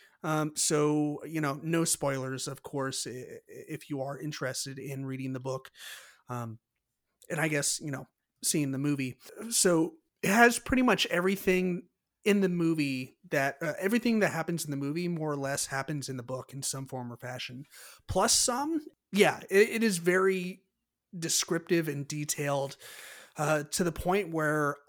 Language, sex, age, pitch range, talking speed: English, male, 30-49, 140-185 Hz, 165 wpm